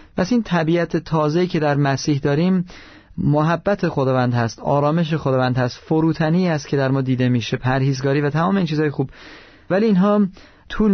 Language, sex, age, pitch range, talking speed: Persian, male, 30-49, 135-170 Hz, 165 wpm